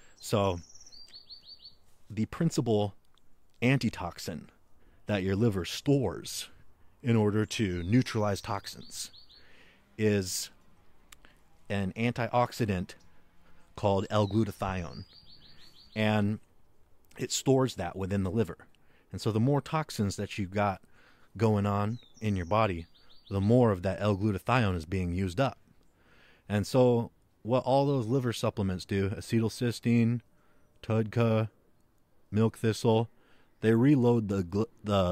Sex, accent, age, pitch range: male, American, 30-49, 95-120 Hz